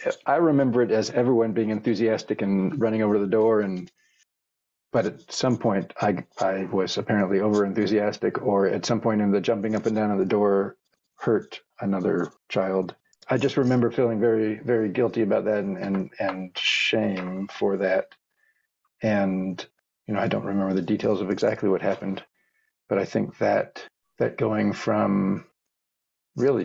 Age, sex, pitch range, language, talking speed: 40-59, male, 95-110 Hz, English, 165 wpm